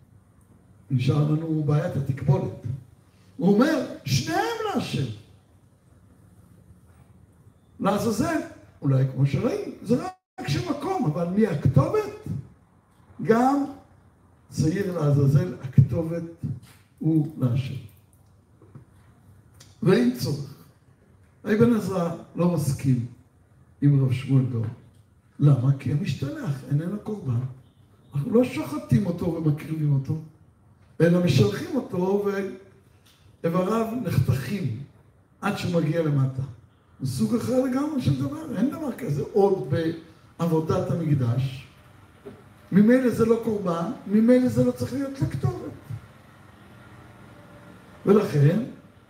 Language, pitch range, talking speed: Hebrew, 120-190 Hz, 95 wpm